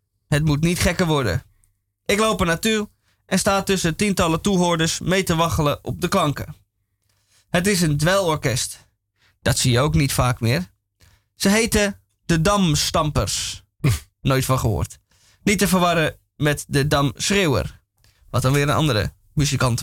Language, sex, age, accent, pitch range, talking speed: Dutch, male, 20-39, Dutch, 105-175 Hz, 150 wpm